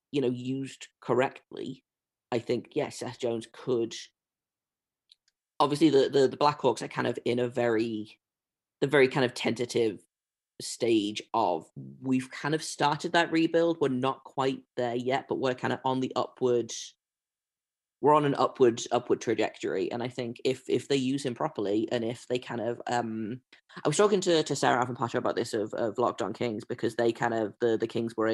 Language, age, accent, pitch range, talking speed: English, 20-39, British, 115-140 Hz, 195 wpm